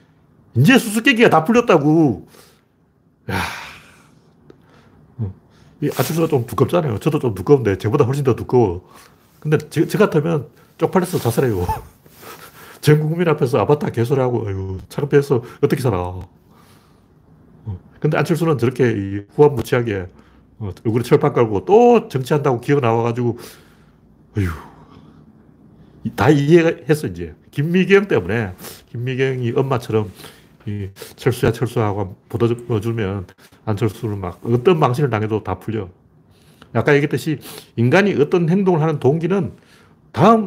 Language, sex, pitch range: Korean, male, 110-155 Hz